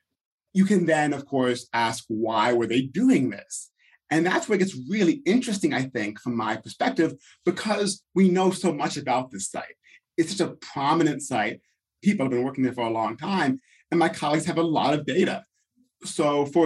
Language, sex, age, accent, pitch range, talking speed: English, male, 30-49, American, 125-190 Hz, 200 wpm